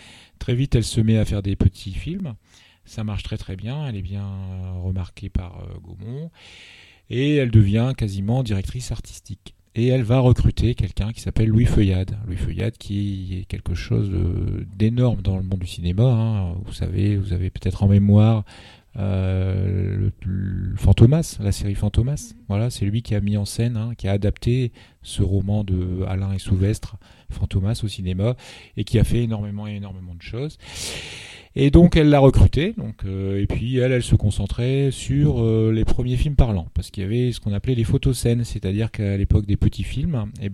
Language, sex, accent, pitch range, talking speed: French, male, French, 95-115 Hz, 190 wpm